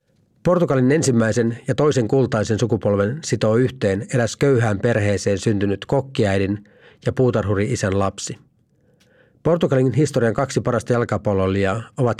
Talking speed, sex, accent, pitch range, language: 110 wpm, male, native, 105-125 Hz, Finnish